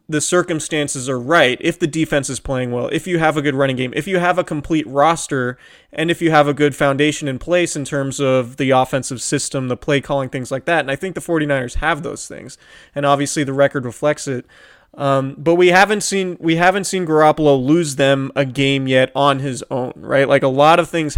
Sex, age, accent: male, 20-39, American